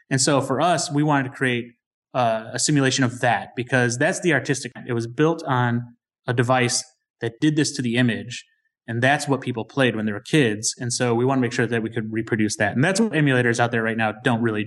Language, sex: English, male